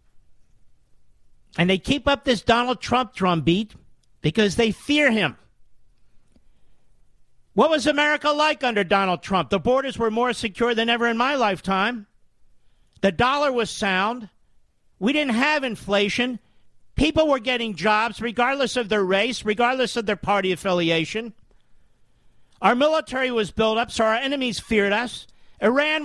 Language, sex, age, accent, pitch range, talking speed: English, male, 50-69, American, 205-265 Hz, 140 wpm